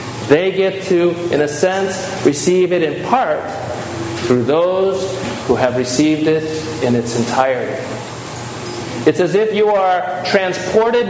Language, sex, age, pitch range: English, male, 40-59, 130-190 Hz